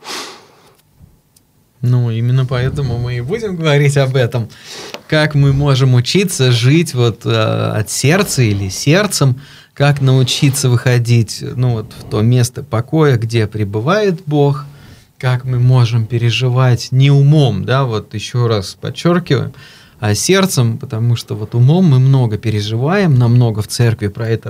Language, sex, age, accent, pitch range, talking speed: Russian, male, 20-39, native, 120-145 Hz, 135 wpm